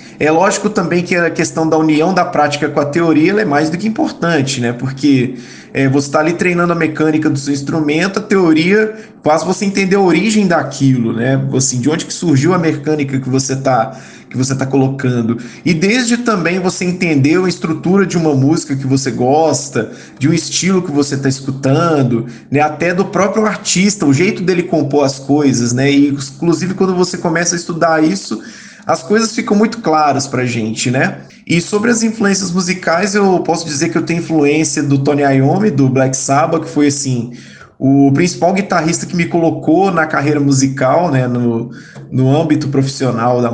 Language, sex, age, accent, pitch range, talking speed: Portuguese, male, 20-39, Brazilian, 135-175 Hz, 185 wpm